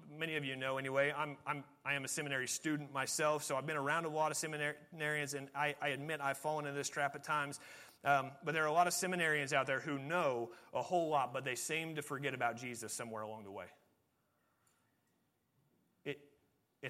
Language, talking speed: English, 210 wpm